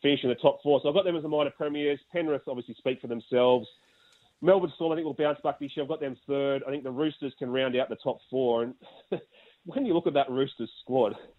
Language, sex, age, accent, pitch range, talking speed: English, male, 30-49, Australian, 125-150 Hz, 255 wpm